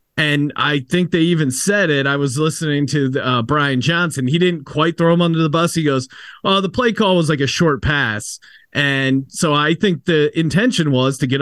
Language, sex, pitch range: English, male, 135-170 Hz